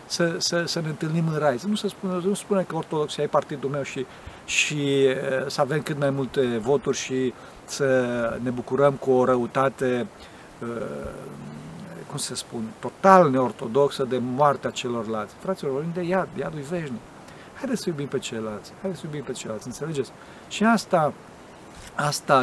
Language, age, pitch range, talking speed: Romanian, 50-69, 130-175 Hz, 170 wpm